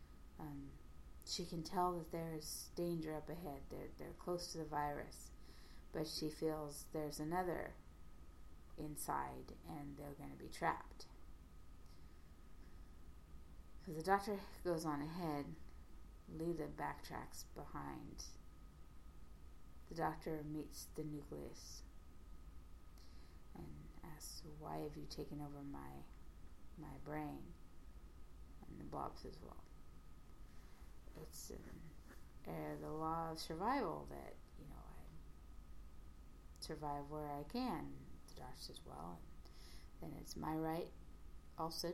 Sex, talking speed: female, 120 wpm